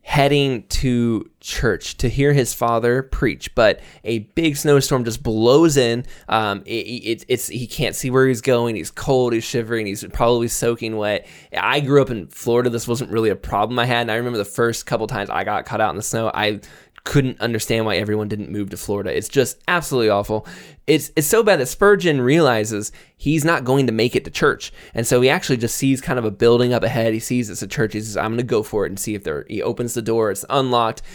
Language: English